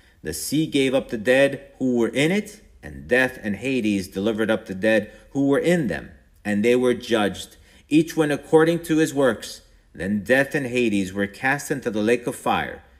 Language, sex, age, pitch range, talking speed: English, male, 50-69, 110-155 Hz, 200 wpm